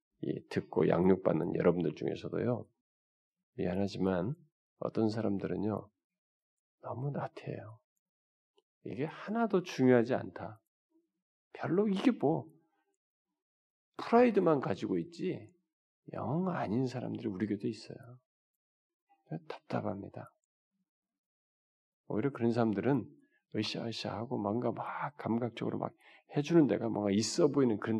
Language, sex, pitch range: Korean, male, 110-180 Hz